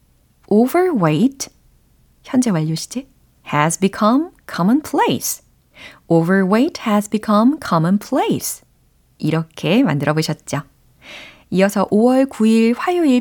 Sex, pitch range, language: female, 160-255 Hz, Korean